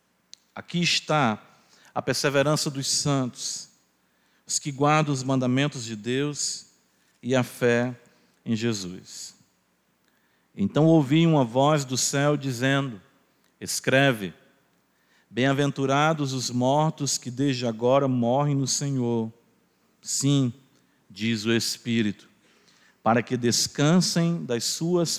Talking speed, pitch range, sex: 105 wpm, 105-135 Hz, male